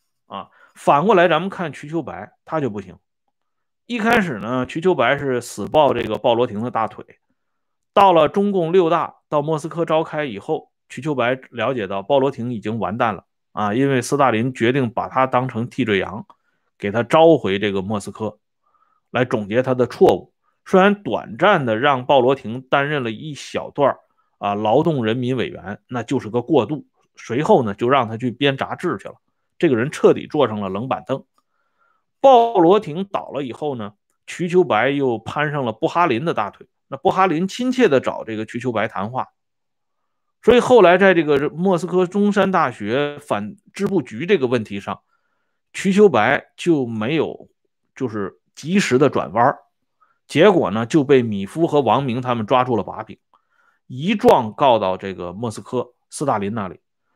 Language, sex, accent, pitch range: Swedish, male, Chinese, 115-185 Hz